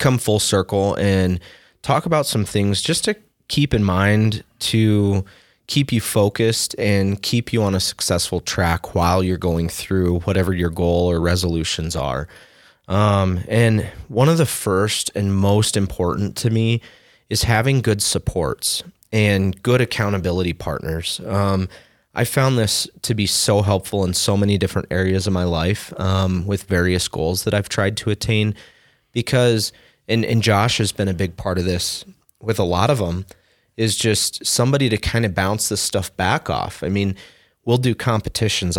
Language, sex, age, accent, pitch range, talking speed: English, male, 30-49, American, 95-115 Hz, 170 wpm